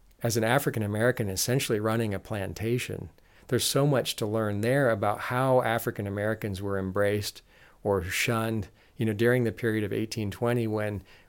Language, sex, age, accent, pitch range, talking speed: English, male, 40-59, American, 100-120 Hz, 160 wpm